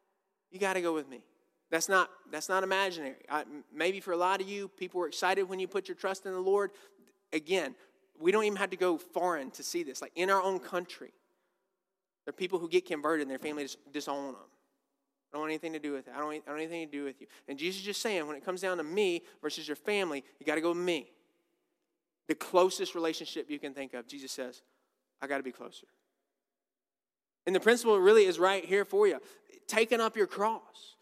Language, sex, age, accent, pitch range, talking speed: English, male, 20-39, American, 175-245 Hz, 230 wpm